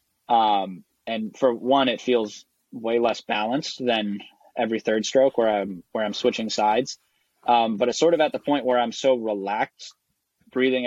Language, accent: English, American